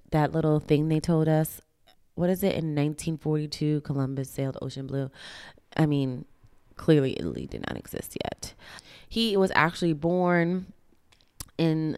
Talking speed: 140 wpm